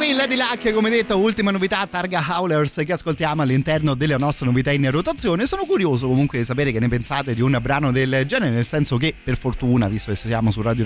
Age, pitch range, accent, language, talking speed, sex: 30-49, 115-145 Hz, native, Italian, 220 wpm, male